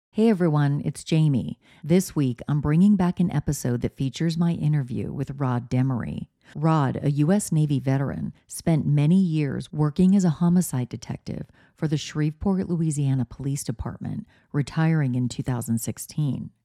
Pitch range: 145-175 Hz